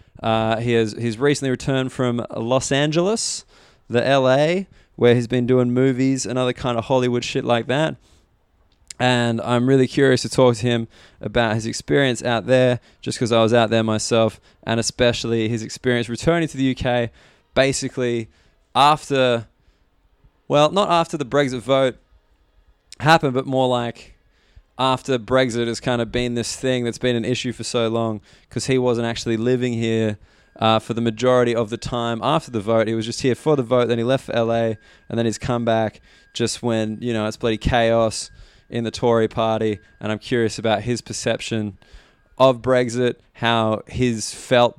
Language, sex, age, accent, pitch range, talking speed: English, male, 20-39, Australian, 115-130 Hz, 180 wpm